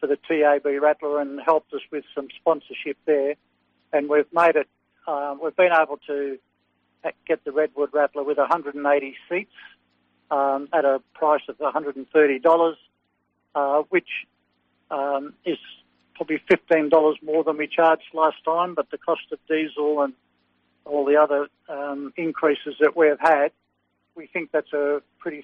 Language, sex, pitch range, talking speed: English, male, 135-160 Hz, 155 wpm